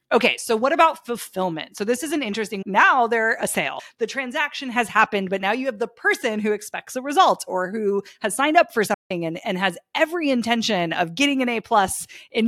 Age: 30-49